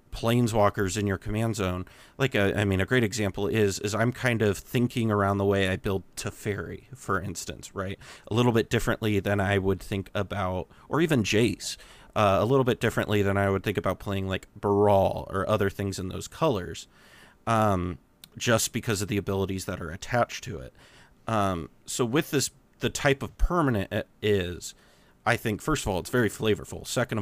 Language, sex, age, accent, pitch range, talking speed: English, male, 30-49, American, 95-115 Hz, 195 wpm